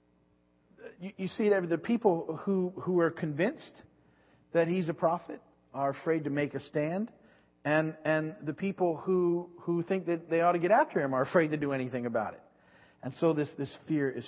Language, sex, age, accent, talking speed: English, male, 50-69, American, 195 wpm